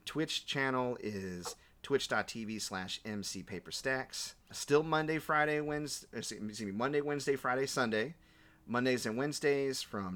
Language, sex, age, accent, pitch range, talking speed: English, male, 30-49, American, 100-130 Hz, 120 wpm